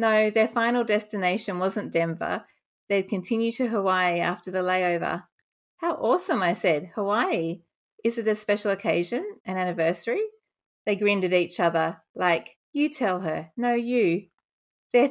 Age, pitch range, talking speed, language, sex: 30-49, 180-225 Hz, 145 wpm, English, female